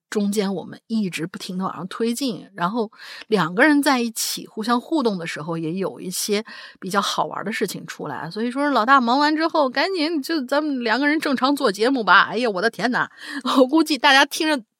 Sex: female